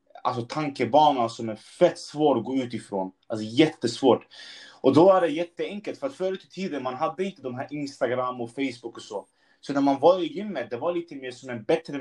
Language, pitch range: Swedish, 125-160 Hz